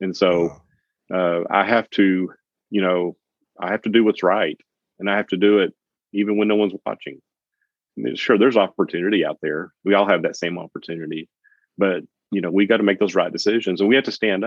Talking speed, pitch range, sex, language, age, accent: 220 wpm, 90-105 Hz, male, English, 40-59, American